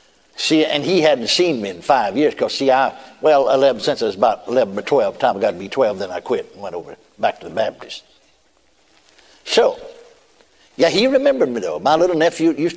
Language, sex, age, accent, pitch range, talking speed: English, male, 60-79, American, 155-210 Hz, 230 wpm